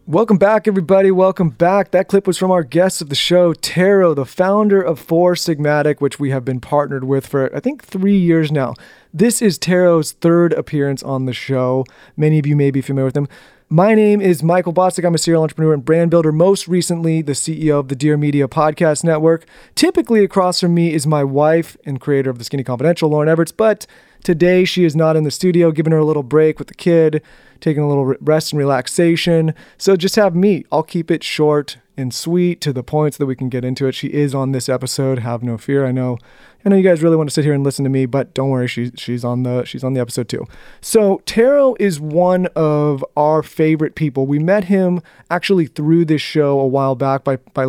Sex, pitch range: male, 135-175 Hz